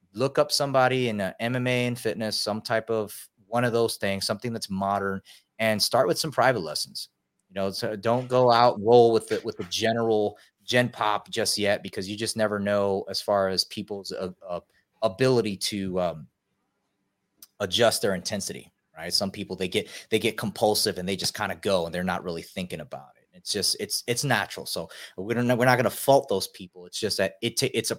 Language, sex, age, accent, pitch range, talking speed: English, male, 30-49, American, 100-120 Hz, 215 wpm